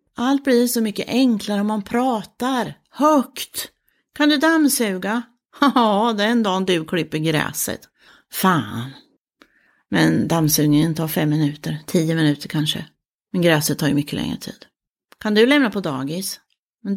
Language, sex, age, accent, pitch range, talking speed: Swedish, female, 40-59, native, 175-260 Hz, 145 wpm